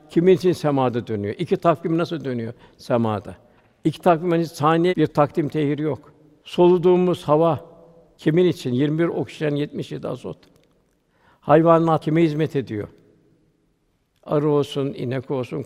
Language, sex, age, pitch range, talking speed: Turkish, male, 60-79, 135-170 Hz, 125 wpm